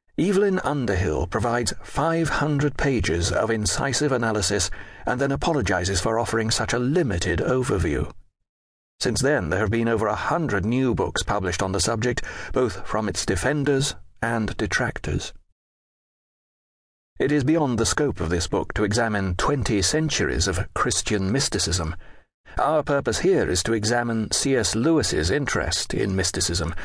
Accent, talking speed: British, 145 wpm